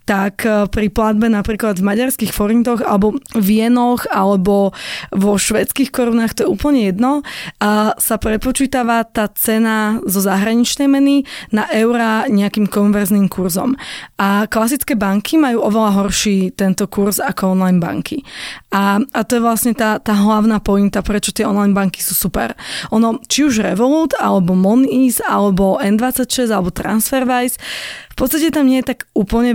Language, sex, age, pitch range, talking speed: Slovak, female, 20-39, 200-240 Hz, 150 wpm